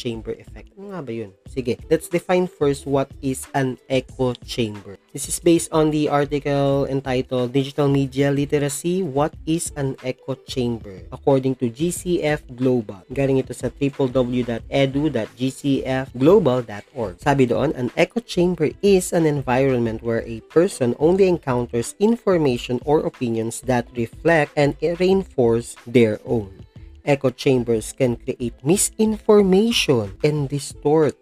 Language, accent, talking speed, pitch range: Filipino, native, 130 wpm, 115-150 Hz